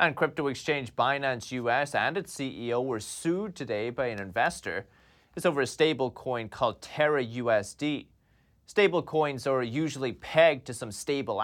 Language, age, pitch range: English, 30-49, 120-145 Hz